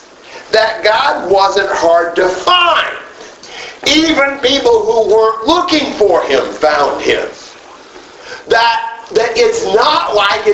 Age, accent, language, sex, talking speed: 50-69, American, English, male, 115 wpm